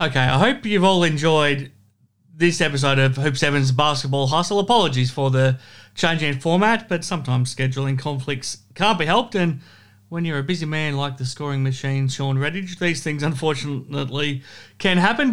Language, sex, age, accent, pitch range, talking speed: English, male, 30-49, Australian, 135-175 Hz, 160 wpm